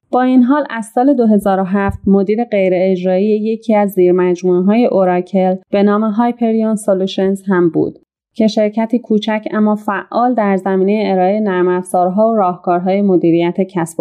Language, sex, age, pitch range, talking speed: Persian, female, 30-49, 185-225 Hz, 140 wpm